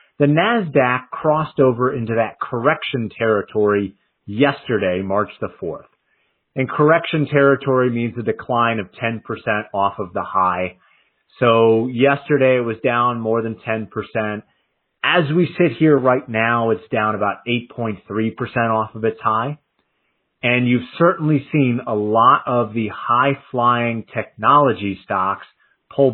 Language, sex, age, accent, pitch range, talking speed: English, male, 30-49, American, 110-140 Hz, 135 wpm